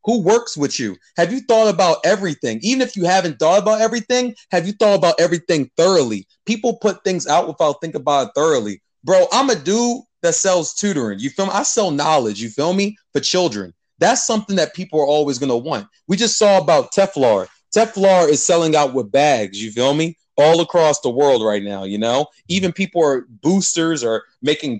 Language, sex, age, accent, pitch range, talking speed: English, male, 30-49, American, 145-195 Hz, 205 wpm